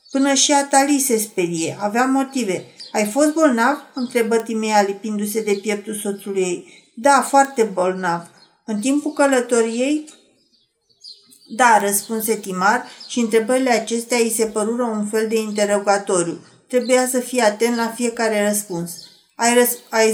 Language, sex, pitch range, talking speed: Romanian, female, 215-255 Hz, 135 wpm